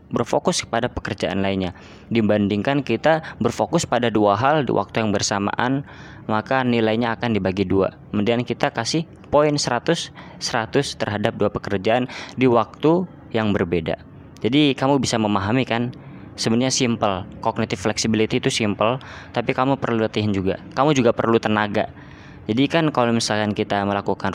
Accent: native